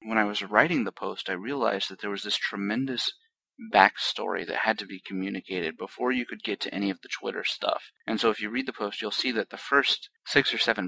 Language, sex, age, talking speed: English, male, 30-49, 245 wpm